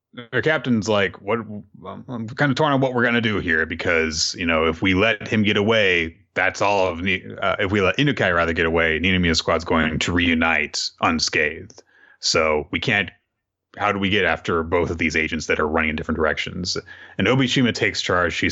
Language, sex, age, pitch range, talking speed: English, male, 30-49, 85-115 Hz, 205 wpm